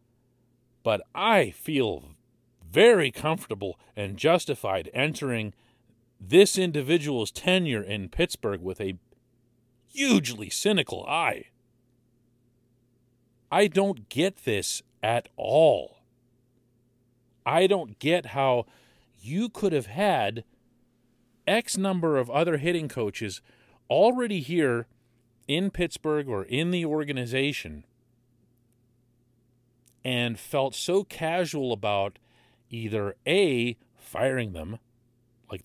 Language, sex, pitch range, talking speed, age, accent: English, male, 115-145 Hz, 95 wpm, 40-59, American